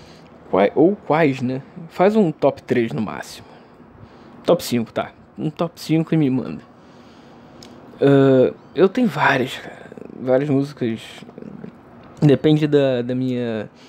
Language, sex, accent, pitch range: Portuguese, male, Brazilian, 130-155 Hz